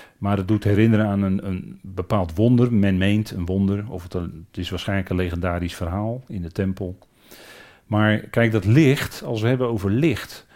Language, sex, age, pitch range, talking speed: Dutch, male, 40-59, 95-130 Hz, 195 wpm